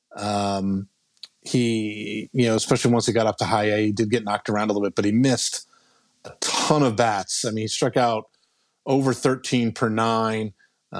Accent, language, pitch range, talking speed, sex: American, English, 110-130 Hz, 195 wpm, male